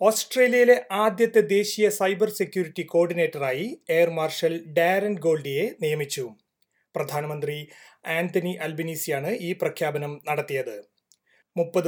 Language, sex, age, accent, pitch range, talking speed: Malayalam, male, 30-49, native, 155-190 Hz, 90 wpm